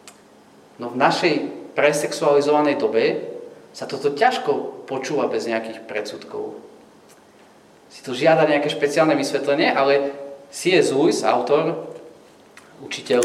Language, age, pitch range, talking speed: Slovak, 30-49, 115-155 Hz, 105 wpm